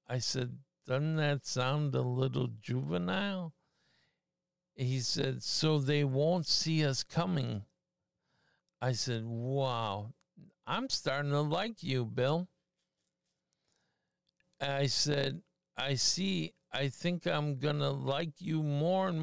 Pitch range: 130-175 Hz